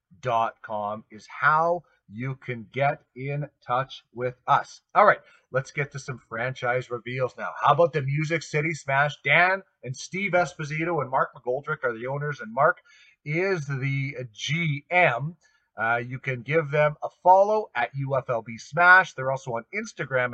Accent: American